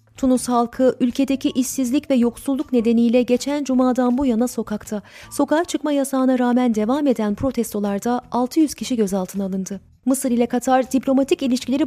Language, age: Turkish, 30-49